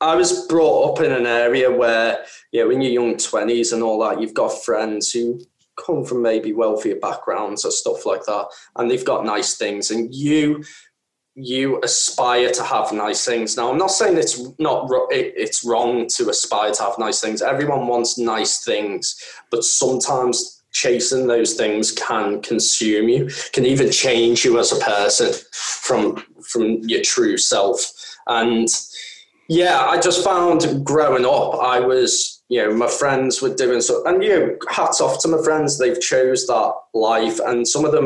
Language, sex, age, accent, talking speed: English, male, 10-29, British, 180 wpm